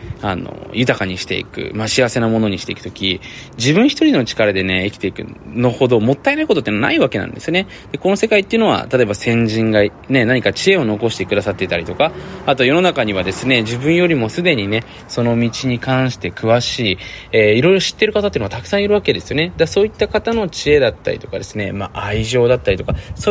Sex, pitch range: male, 100-145 Hz